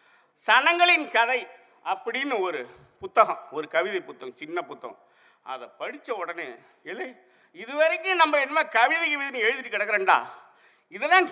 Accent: native